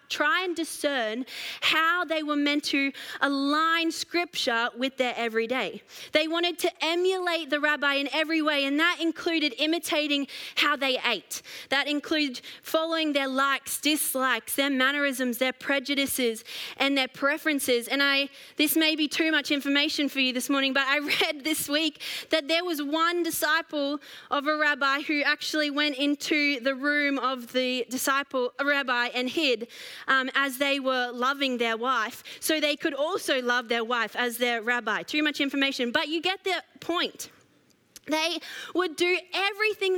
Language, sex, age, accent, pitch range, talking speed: English, female, 20-39, Australian, 265-320 Hz, 165 wpm